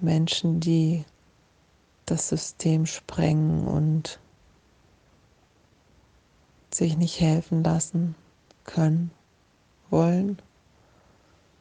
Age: 30-49